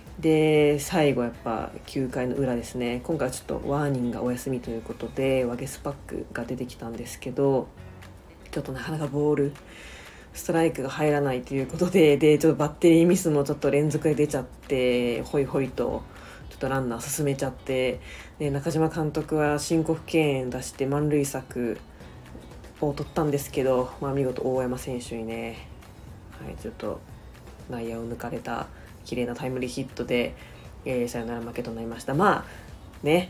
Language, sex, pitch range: Japanese, female, 125-150 Hz